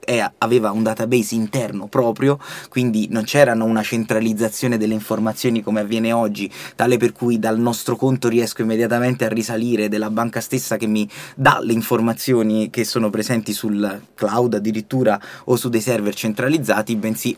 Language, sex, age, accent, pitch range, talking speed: Italian, male, 20-39, native, 110-125 Hz, 155 wpm